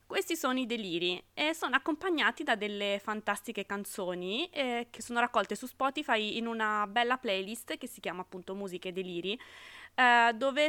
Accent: native